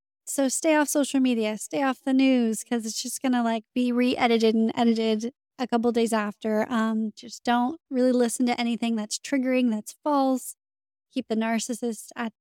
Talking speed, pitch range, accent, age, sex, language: 190 wpm, 220-260 Hz, American, 30-49, female, English